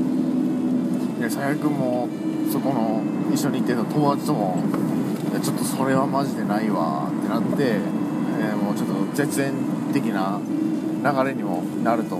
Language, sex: Japanese, male